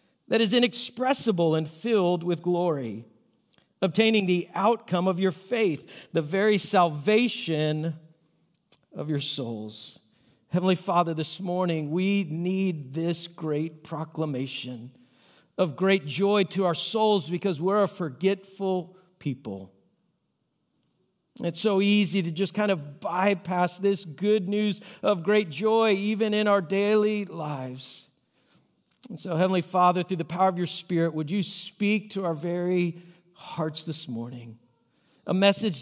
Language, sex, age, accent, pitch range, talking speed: English, male, 50-69, American, 160-200 Hz, 130 wpm